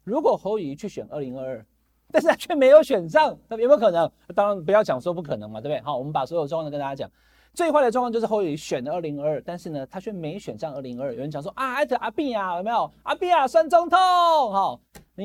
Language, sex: Chinese, male